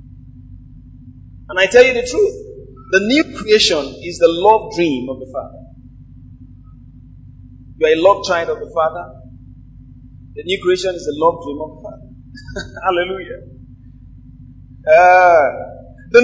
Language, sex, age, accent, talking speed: English, male, 30-49, Nigerian, 135 wpm